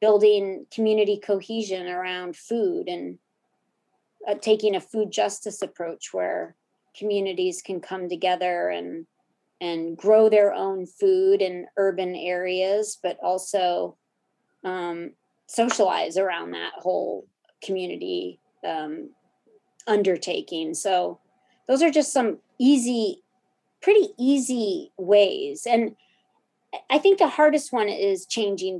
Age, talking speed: 30-49, 110 wpm